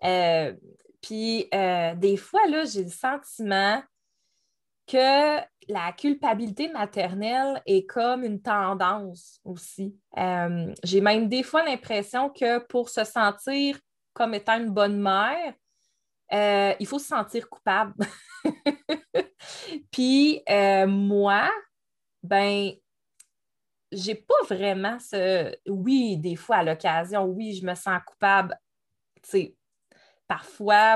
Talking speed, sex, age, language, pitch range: 110 wpm, female, 20-39, French, 195-260 Hz